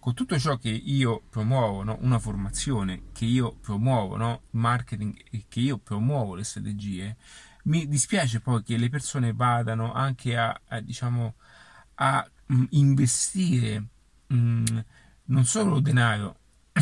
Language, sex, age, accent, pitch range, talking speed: Italian, male, 30-49, native, 110-135 Hz, 120 wpm